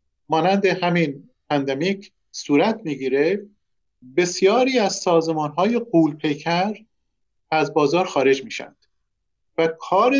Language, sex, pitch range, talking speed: Persian, male, 155-215 Hz, 90 wpm